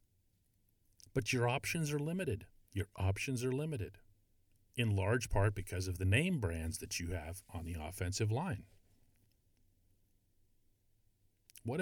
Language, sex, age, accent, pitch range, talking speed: English, male, 40-59, American, 100-125 Hz, 125 wpm